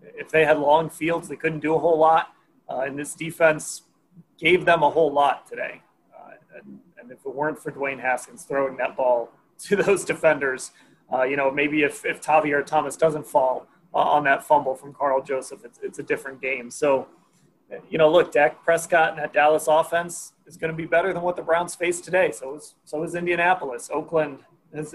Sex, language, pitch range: male, English, 140-165 Hz